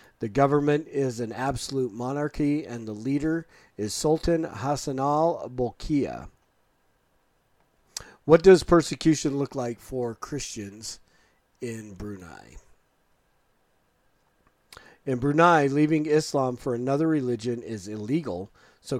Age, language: 40-59, English